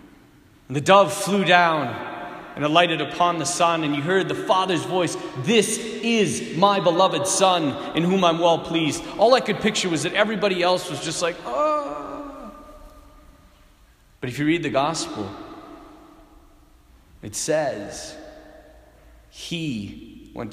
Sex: male